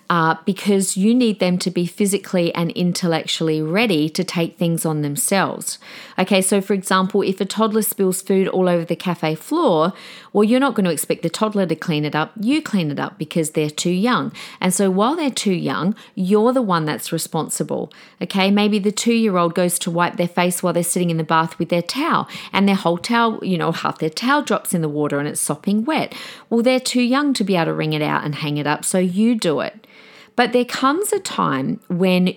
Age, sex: 40-59, female